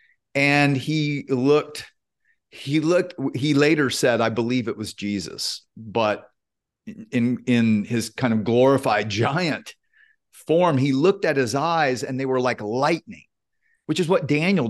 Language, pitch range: English, 115-150 Hz